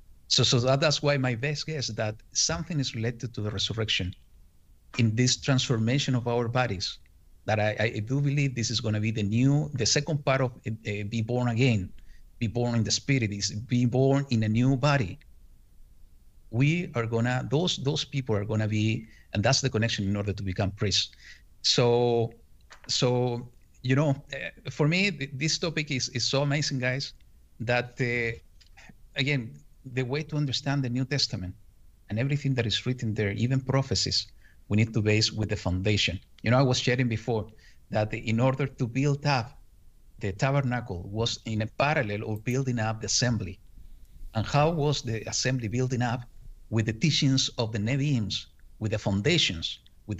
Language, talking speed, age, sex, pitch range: English, 180 wpm, 50-69, male, 105-135 Hz